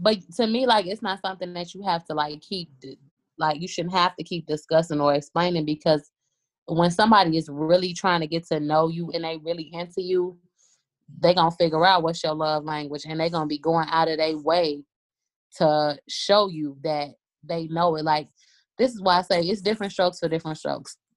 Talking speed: 220 wpm